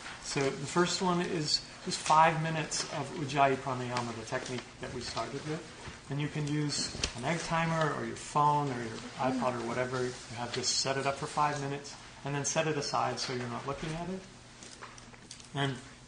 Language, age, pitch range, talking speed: English, 30-49, 125-150 Hz, 200 wpm